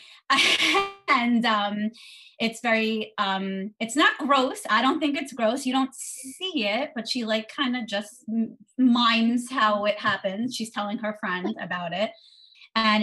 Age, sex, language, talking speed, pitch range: 20-39, female, English, 155 wpm, 200-235 Hz